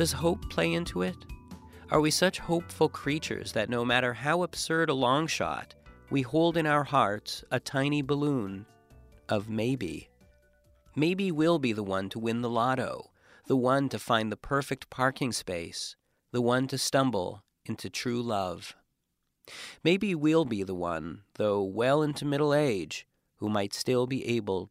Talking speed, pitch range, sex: 165 wpm, 100-140 Hz, male